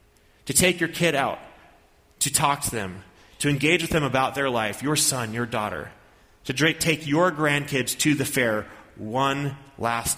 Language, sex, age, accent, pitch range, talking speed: English, male, 30-49, American, 105-145 Hz, 170 wpm